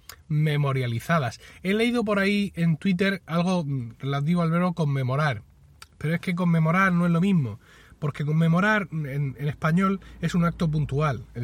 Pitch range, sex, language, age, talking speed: 135-175 Hz, male, Spanish, 30-49, 155 wpm